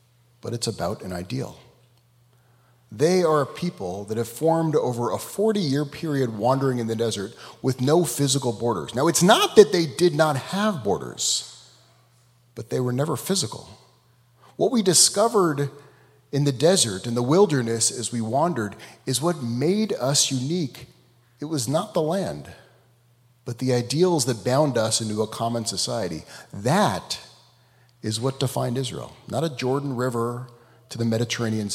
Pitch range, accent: 120-145 Hz, American